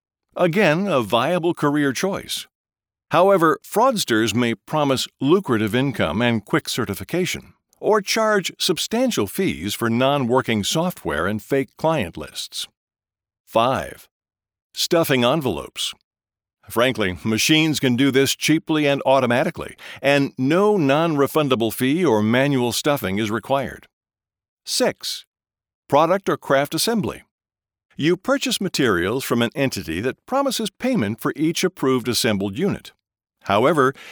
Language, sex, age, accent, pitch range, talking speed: English, male, 50-69, American, 120-180 Hz, 115 wpm